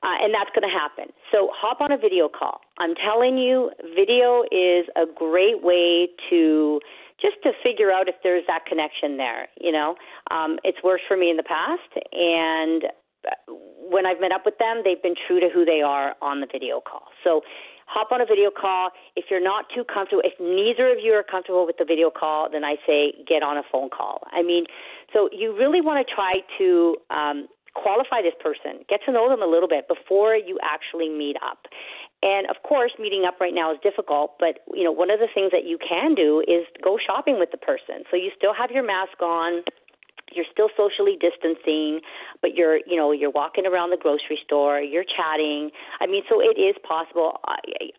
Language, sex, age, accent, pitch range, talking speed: English, female, 40-59, American, 165-240 Hz, 210 wpm